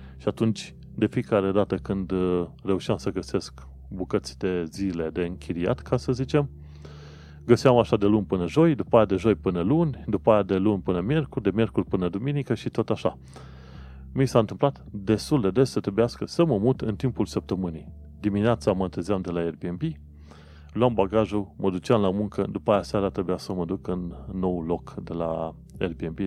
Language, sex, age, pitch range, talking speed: Romanian, male, 30-49, 85-110 Hz, 185 wpm